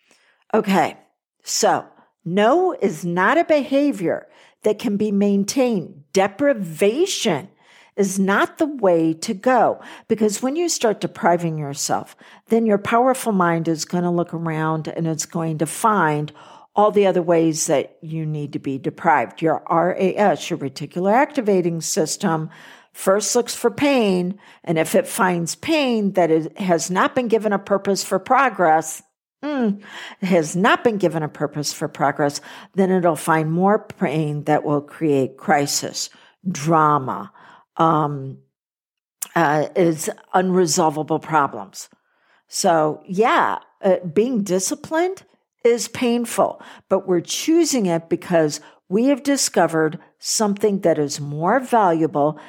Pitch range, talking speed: 160-225 Hz, 135 wpm